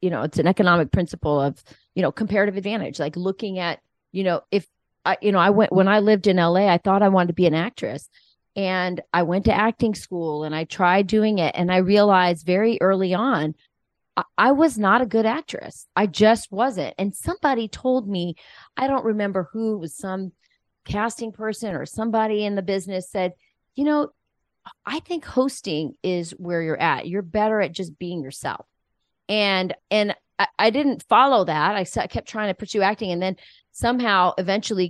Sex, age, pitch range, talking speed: female, 30-49, 170-215 Hz, 195 wpm